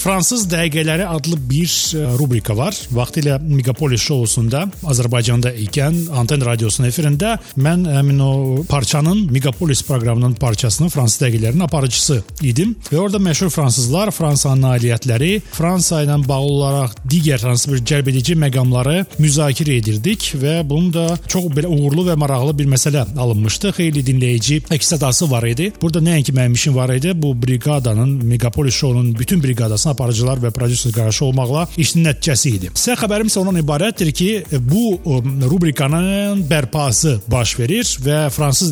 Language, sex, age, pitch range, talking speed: Turkish, male, 40-59, 125-165 Hz, 135 wpm